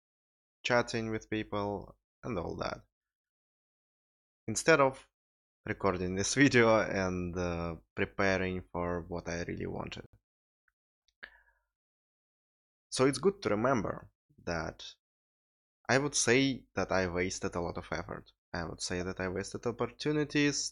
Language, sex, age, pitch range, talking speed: English, male, 20-39, 85-110 Hz, 120 wpm